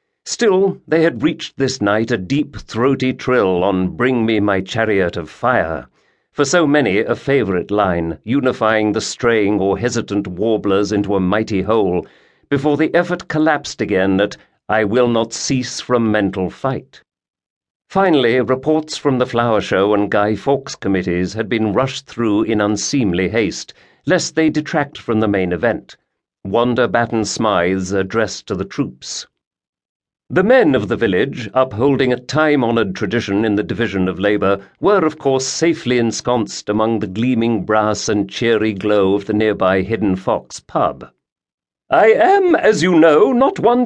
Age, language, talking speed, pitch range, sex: 50-69, English, 160 wpm, 105-160 Hz, male